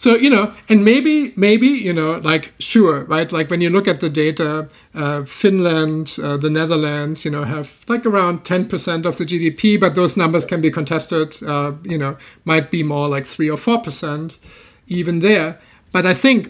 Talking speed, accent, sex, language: 195 wpm, German, male, English